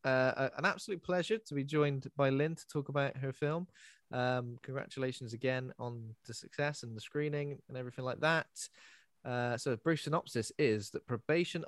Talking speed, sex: 175 wpm, male